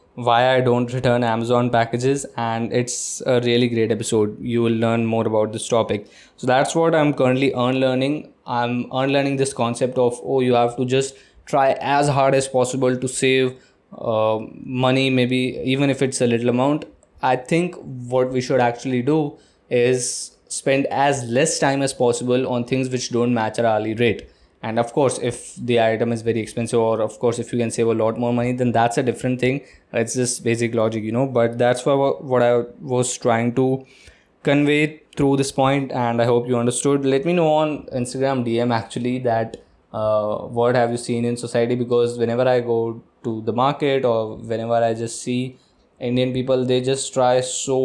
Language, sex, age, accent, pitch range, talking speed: Hindi, male, 20-39, native, 115-130 Hz, 195 wpm